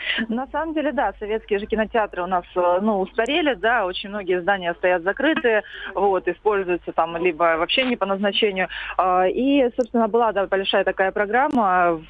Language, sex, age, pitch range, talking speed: Russian, female, 20-39, 180-220 Hz, 155 wpm